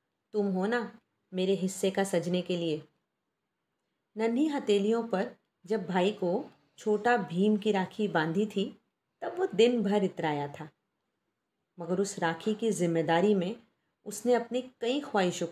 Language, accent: Hindi, native